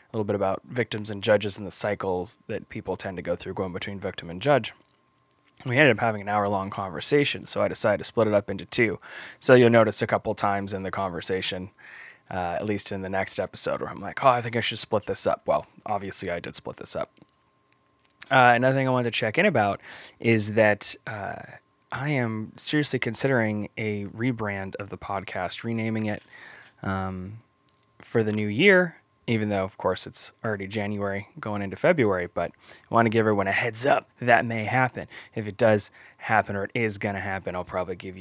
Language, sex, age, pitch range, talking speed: English, male, 20-39, 95-115 Hz, 210 wpm